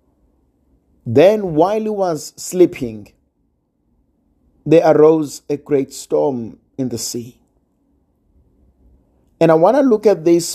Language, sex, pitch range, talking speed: English, male, 115-165 Hz, 115 wpm